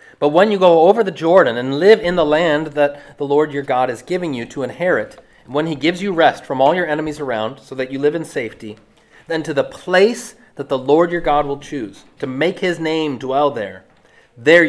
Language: English